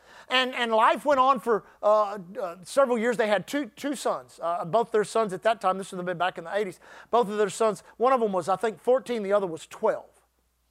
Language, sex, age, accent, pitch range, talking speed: English, male, 50-69, American, 185-265 Hz, 250 wpm